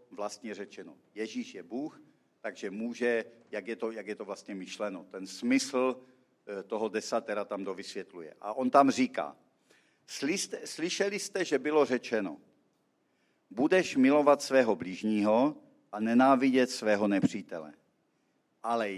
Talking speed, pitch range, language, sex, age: 115 wpm, 105-145 Hz, Czech, male, 50-69